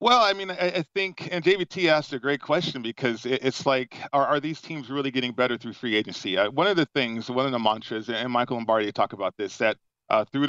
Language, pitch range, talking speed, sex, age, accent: English, 120-145 Hz, 245 wpm, male, 40-59, American